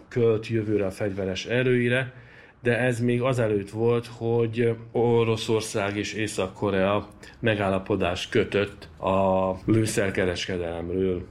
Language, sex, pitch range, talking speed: Hungarian, male, 105-120 Hz, 95 wpm